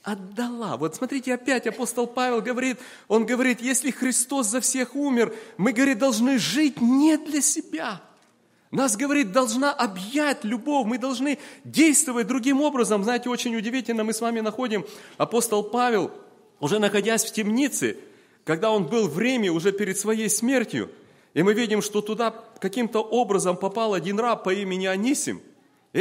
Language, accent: Russian, native